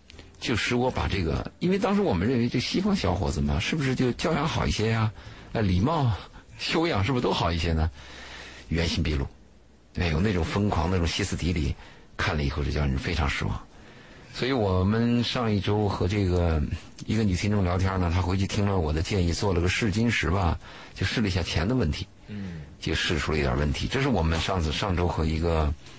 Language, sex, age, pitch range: Chinese, male, 50-69, 80-110 Hz